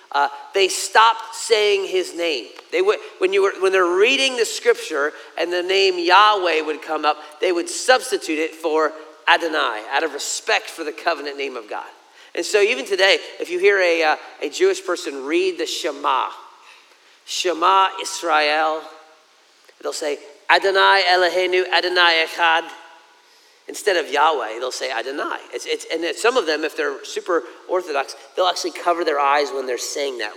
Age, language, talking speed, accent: 40-59, English, 175 wpm, American